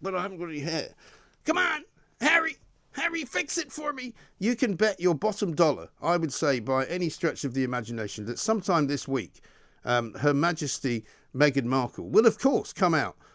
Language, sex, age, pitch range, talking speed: English, male, 50-69, 115-175 Hz, 195 wpm